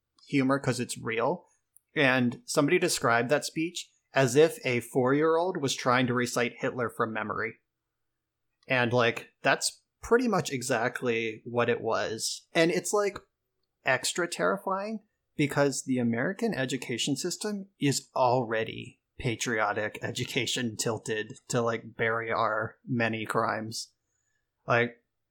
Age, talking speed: 30-49, 120 wpm